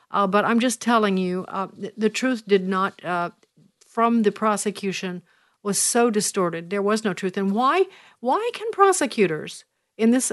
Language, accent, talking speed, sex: English, American, 175 wpm, female